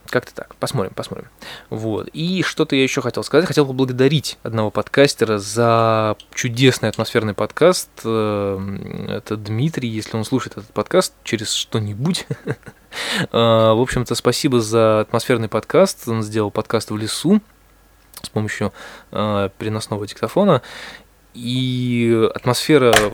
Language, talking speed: Russian, 120 wpm